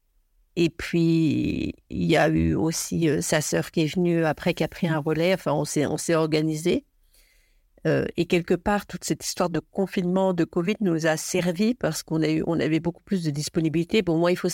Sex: female